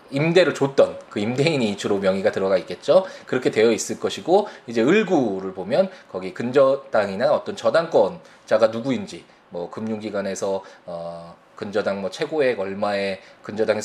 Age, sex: 20-39, male